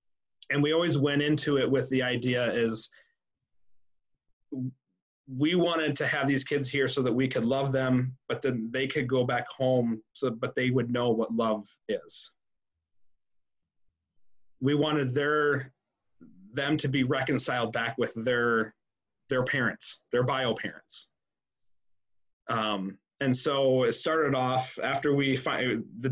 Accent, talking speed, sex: American, 145 wpm, male